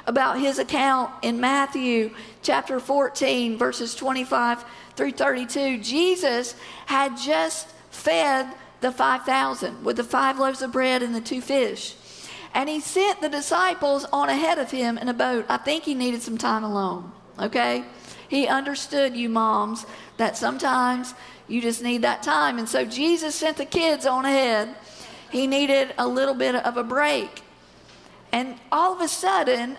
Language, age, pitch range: English, 50-69, 230-280 Hz